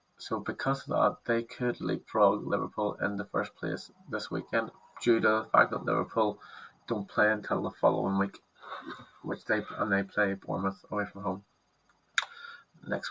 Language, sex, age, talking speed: English, male, 20-39, 165 wpm